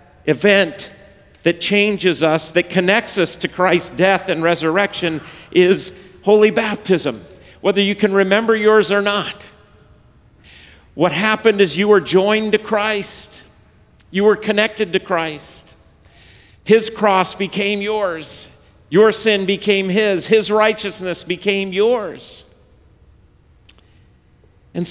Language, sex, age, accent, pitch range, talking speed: English, male, 50-69, American, 155-205 Hz, 115 wpm